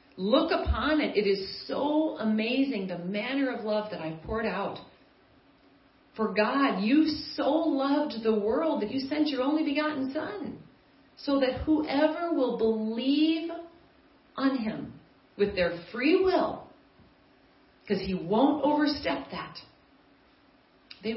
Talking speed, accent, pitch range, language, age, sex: 130 wpm, American, 210-295 Hz, English, 40-59, female